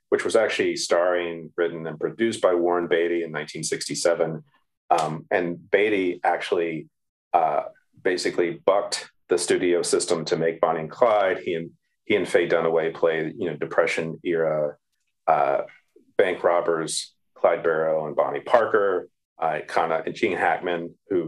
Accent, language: American, English